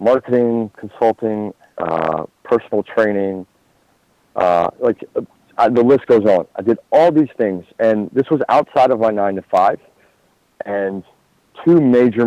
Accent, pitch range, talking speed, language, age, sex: American, 90-115 Hz, 130 wpm, English, 40-59, male